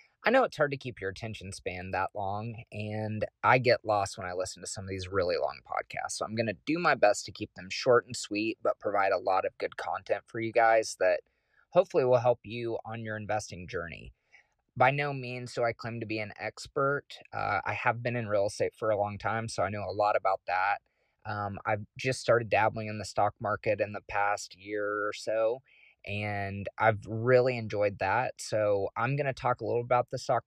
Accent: American